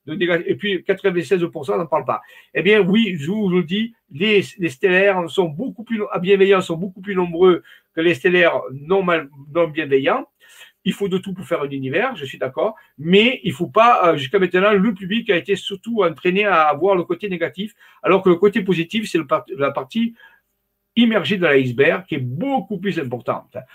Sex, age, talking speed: male, 60-79, 205 wpm